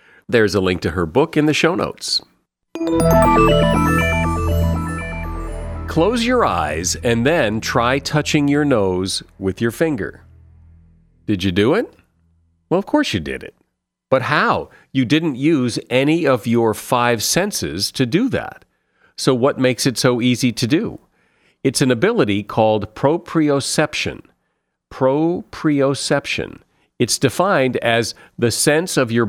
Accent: American